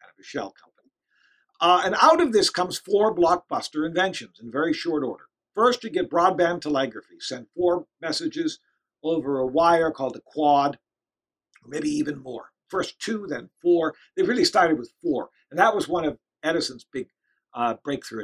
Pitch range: 150-240 Hz